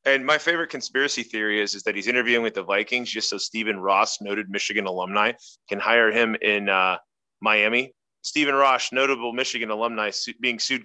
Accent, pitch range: American, 110-145 Hz